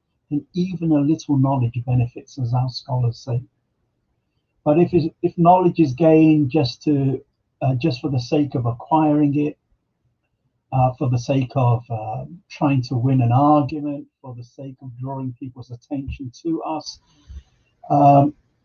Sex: male